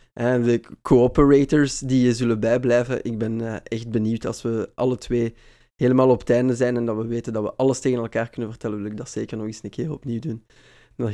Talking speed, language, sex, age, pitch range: 225 wpm, Dutch, male, 20-39, 115-135 Hz